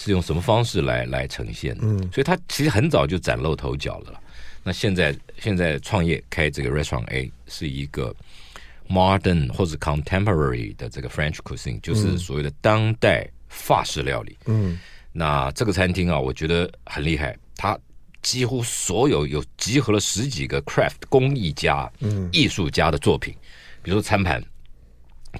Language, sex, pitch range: Chinese, male, 65-105 Hz